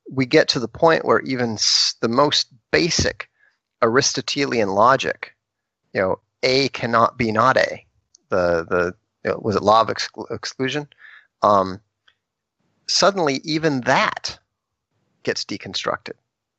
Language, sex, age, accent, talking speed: English, male, 40-59, American, 125 wpm